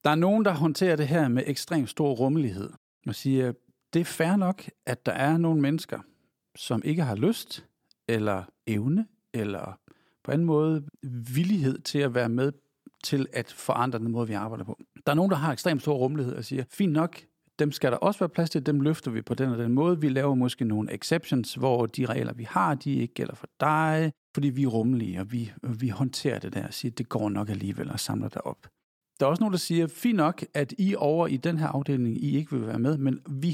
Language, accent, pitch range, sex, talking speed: Danish, native, 120-160 Hz, male, 230 wpm